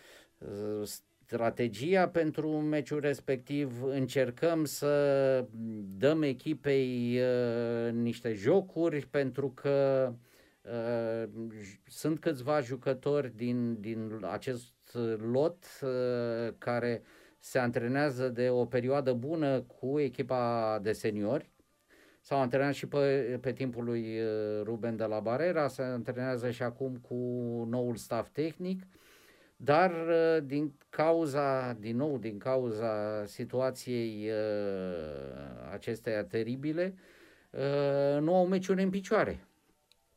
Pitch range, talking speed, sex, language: 115-145 Hz, 105 wpm, male, Romanian